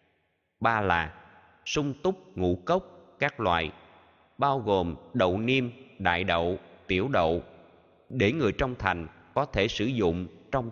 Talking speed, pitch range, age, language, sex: 140 wpm, 85-125 Hz, 20-39, Vietnamese, male